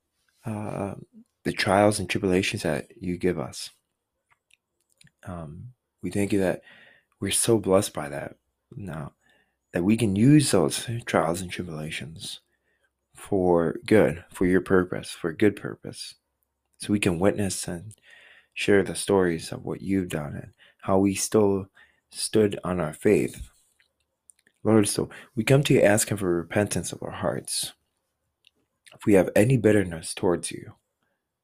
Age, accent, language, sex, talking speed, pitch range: 20-39, American, English, male, 145 wpm, 85-110 Hz